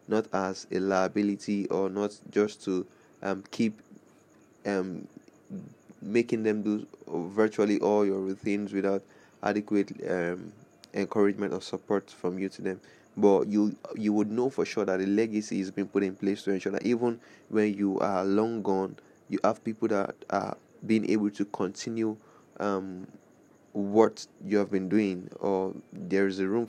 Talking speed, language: 165 wpm, English